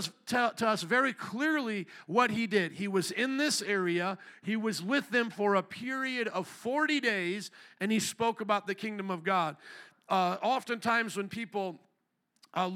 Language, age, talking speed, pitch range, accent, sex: English, 50-69, 165 wpm, 190-230 Hz, American, male